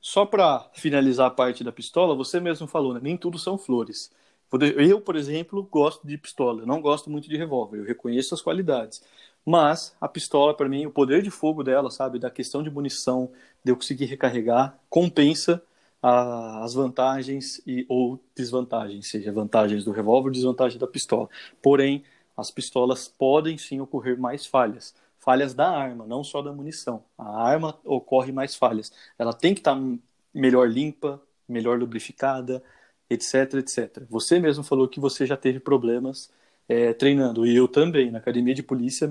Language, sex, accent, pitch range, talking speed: Portuguese, male, Brazilian, 125-150 Hz, 170 wpm